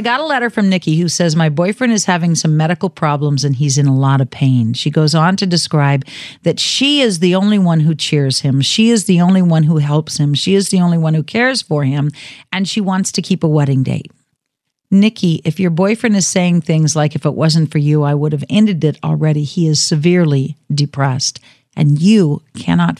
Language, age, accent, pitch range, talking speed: English, 50-69, American, 150-195 Hz, 225 wpm